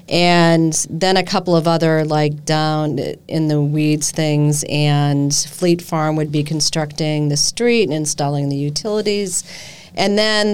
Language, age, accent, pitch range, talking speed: English, 40-59, American, 150-175 Hz, 150 wpm